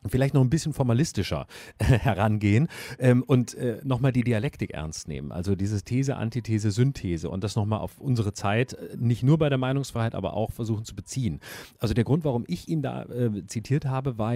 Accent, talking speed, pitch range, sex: German, 180 wpm, 100-130 Hz, male